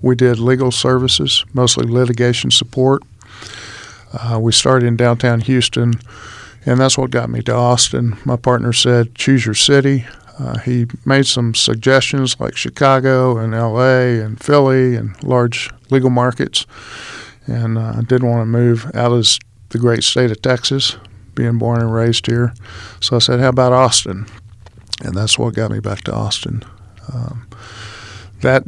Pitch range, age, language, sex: 115-125 Hz, 50-69, English, male